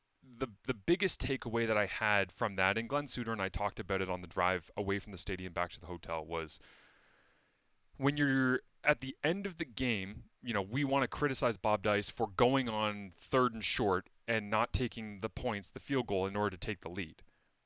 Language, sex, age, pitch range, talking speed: English, male, 30-49, 100-130 Hz, 220 wpm